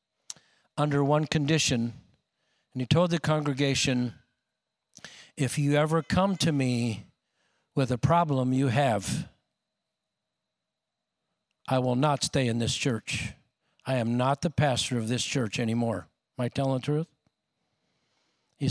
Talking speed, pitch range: 130 wpm, 120-145 Hz